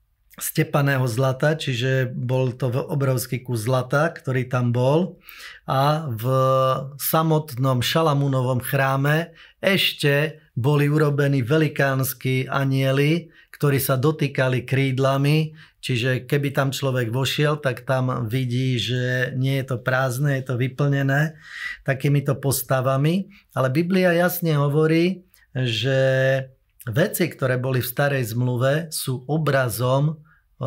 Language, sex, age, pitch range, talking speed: Slovak, male, 30-49, 130-150 Hz, 110 wpm